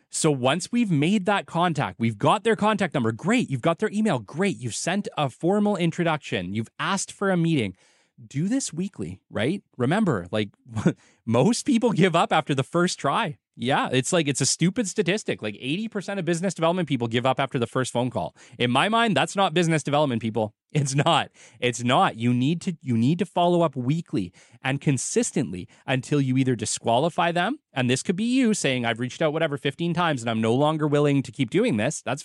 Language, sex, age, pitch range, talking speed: English, male, 30-49, 120-185 Hz, 205 wpm